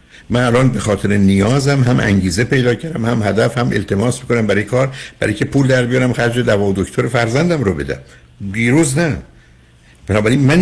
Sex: male